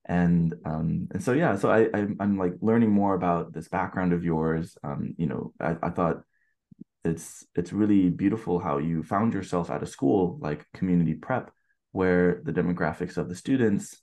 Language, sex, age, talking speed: English, male, 20-39, 185 wpm